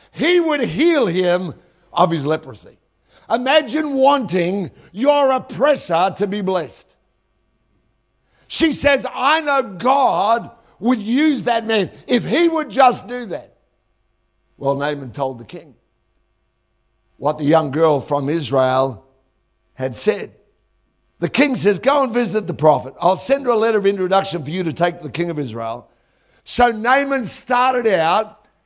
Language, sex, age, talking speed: English, male, 60-79, 145 wpm